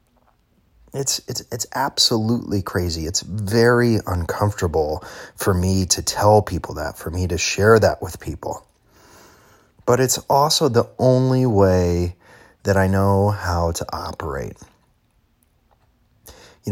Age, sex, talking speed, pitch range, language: 30-49, male, 120 wpm, 90-110 Hz, English